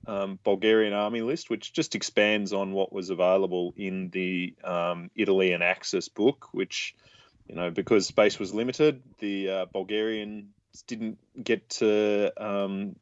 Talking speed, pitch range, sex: 150 wpm, 95-115 Hz, male